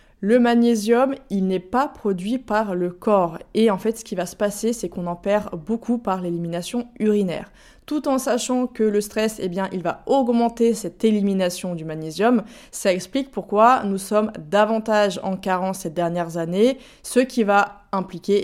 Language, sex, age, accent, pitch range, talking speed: French, female, 20-39, French, 185-225 Hz, 180 wpm